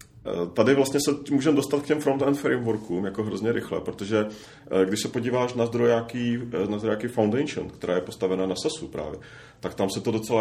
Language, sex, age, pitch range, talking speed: Czech, male, 30-49, 105-115 Hz, 185 wpm